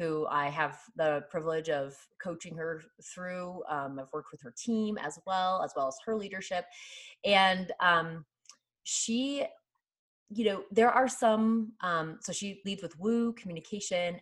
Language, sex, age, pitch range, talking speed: English, female, 20-39, 160-205 Hz, 155 wpm